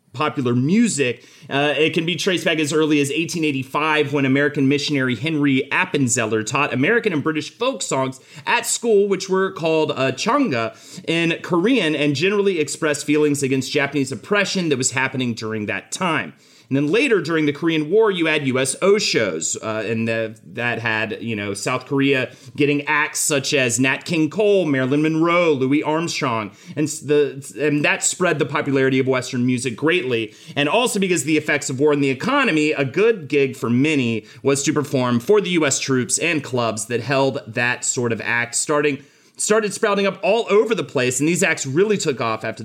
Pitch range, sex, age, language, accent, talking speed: 130-160 Hz, male, 30-49, English, American, 185 wpm